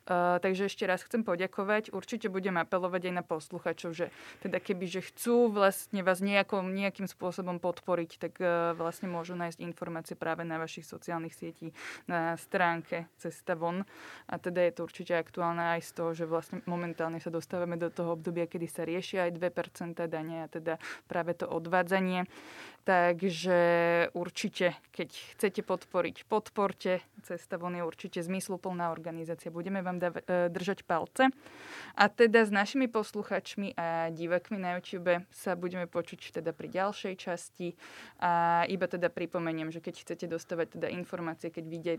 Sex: female